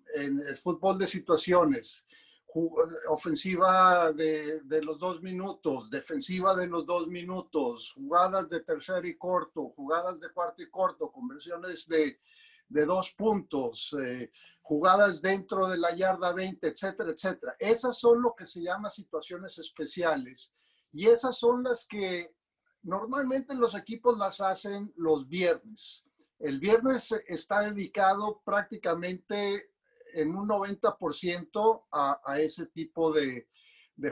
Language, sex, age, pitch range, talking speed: Spanish, male, 50-69, 165-225 Hz, 130 wpm